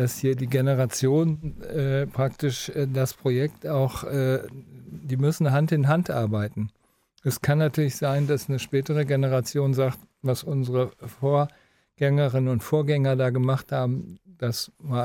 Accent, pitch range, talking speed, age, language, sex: German, 125-150 Hz, 145 wpm, 50-69, German, male